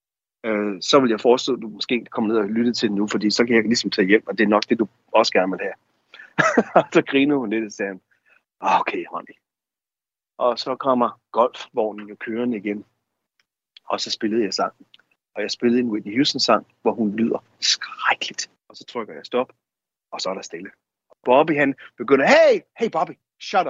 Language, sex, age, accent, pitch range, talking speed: Danish, male, 30-49, native, 115-155 Hz, 205 wpm